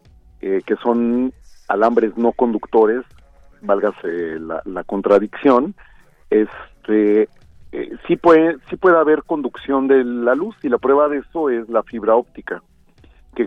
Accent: Mexican